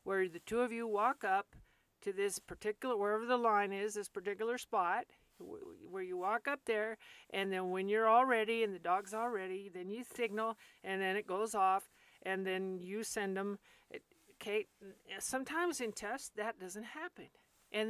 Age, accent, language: 50-69, American, English